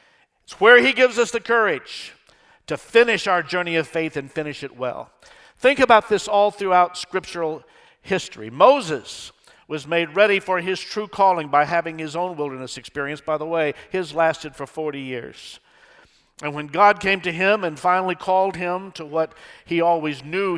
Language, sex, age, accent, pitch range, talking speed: English, male, 50-69, American, 155-200 Hz, 180 wpm